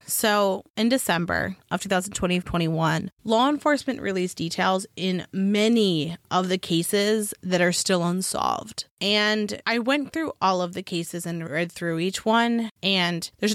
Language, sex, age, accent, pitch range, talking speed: English, female, 20-39, American, 170-210 Hz, 150 wpm